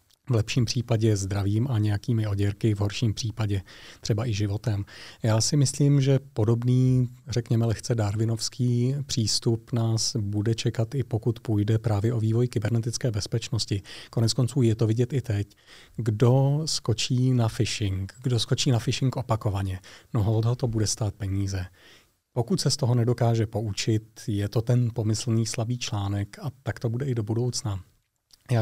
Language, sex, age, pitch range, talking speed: Czech, male, 40-59, 110-125 Hz, 155 wpm